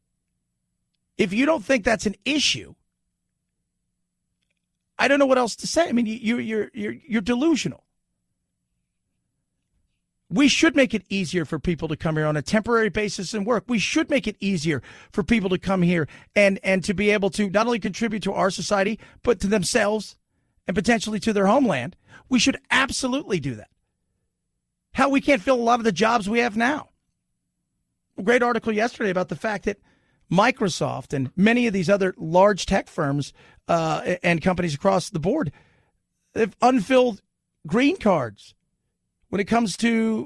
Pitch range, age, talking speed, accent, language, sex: 180-235 Hz, 40-59, 170 wpm, American, English, male